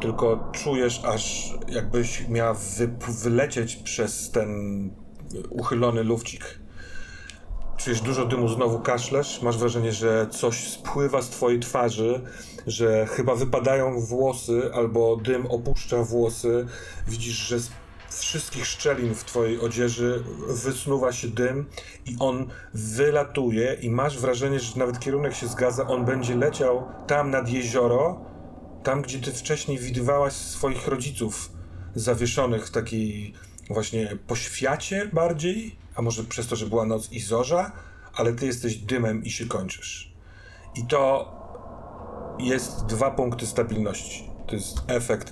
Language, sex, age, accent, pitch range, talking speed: Polish, male, 40-59, native, 110-130 Hz, 130 wpm